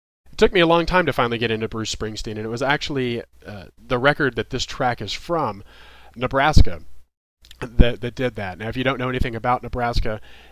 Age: 30-49